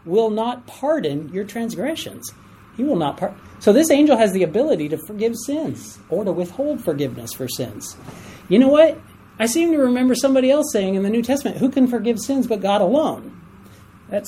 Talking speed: 195 wpm